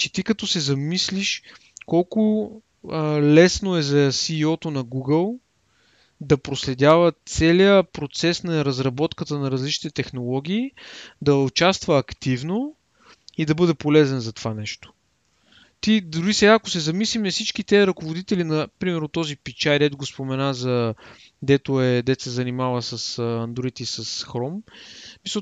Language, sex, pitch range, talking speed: Bulgarian, male, 135-190 Hz, 140 wpm